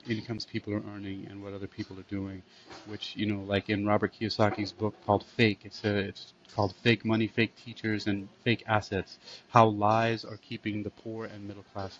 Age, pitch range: 30-49, 100-110 Hz